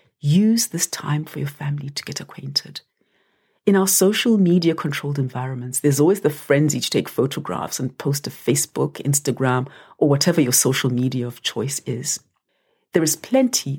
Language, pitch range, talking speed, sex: English, 135-180 Hz, 165 wpm, female